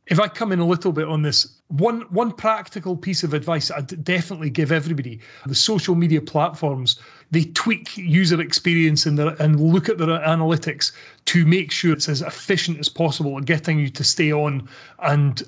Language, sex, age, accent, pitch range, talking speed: English, male, 30-49, British, 150-175 Hz, 185 wpm